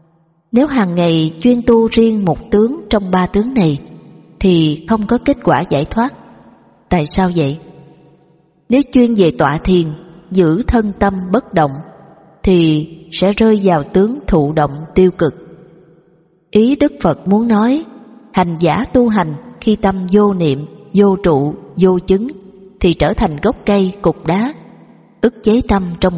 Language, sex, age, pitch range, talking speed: Vietnamese, female, 20-39, 165-225 Hz, 160 wpm